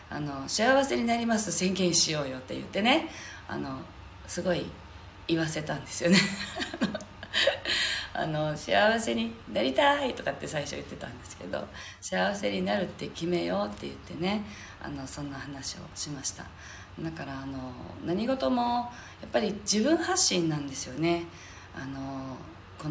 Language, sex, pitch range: Japanese, female, 130-175 Hz